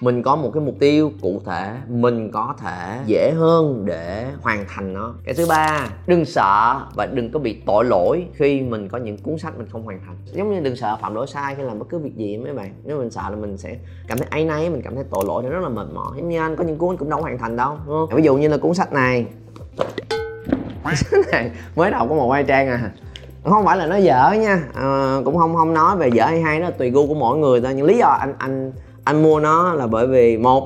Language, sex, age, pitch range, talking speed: Vietnamese, male, 20-39, 115-155 Hz, 260 wpm